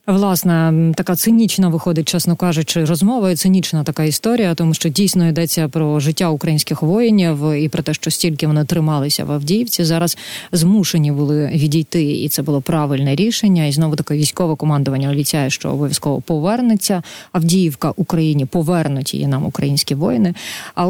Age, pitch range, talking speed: 30-49, 150-180 Hz, 150 wpm